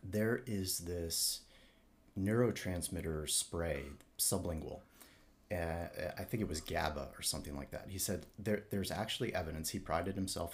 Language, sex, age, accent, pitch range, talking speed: English, male, 30-49, American, 75-105 Hz, 135 wpm